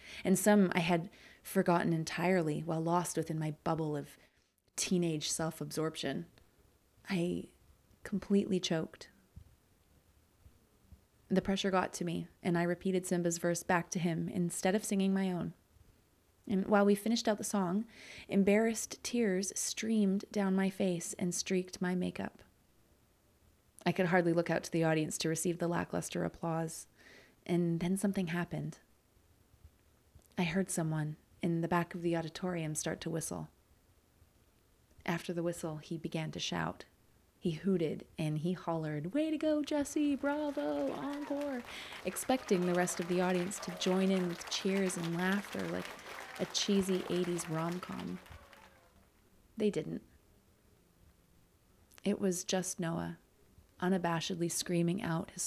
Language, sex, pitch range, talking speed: English, female, 155-190 Hz, 135 wpm